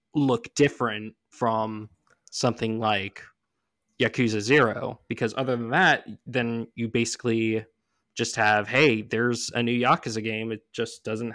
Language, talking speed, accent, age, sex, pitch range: English, 130 wpm, American, 20-39, male, 110-125 Hz